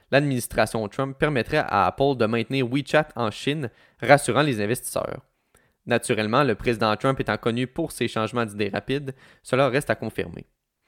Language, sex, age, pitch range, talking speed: French, male, 20-39, 115-140 Hz, 155 wpm